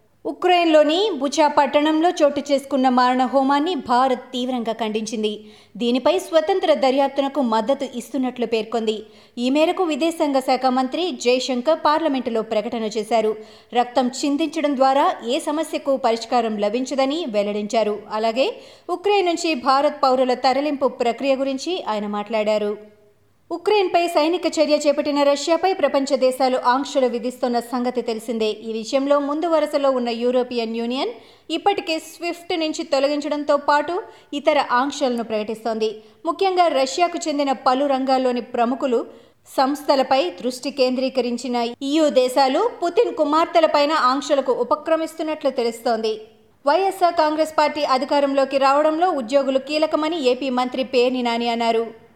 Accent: native